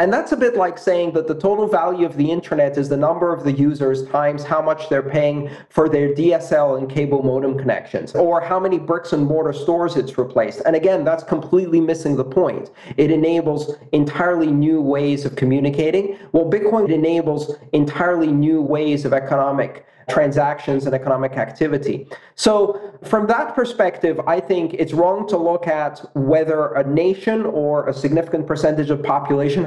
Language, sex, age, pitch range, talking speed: English, male, 40-59, 145-175 Hz, 170 wpm